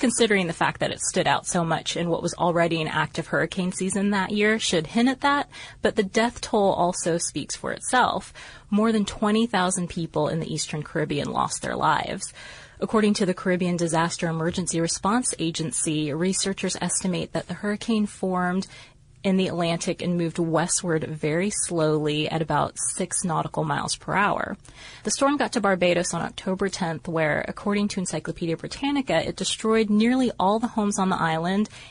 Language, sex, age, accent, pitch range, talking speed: English, female, 30-49, American, 165-200 Hz, 175 wpm